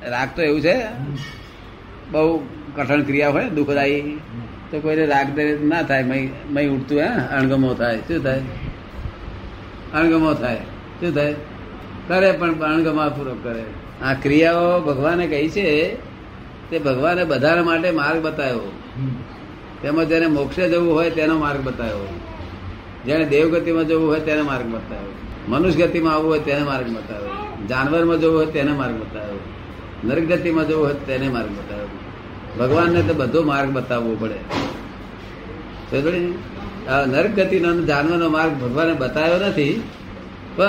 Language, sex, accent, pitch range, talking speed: Gujarati, male, native, 120-165 Hz, 105 wpm